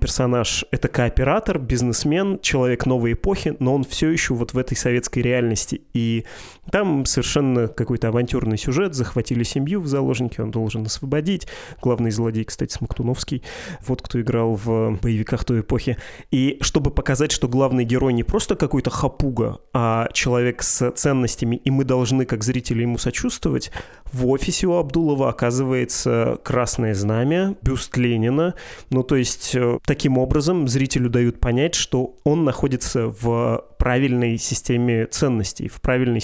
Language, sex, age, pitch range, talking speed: Russian, male, 20-39, 120-140 Hz, 145 wpm